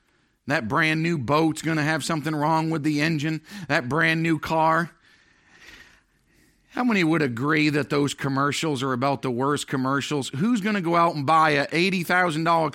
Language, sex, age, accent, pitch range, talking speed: English, male, 50-69, American, 145-195 Hz, 175 wpm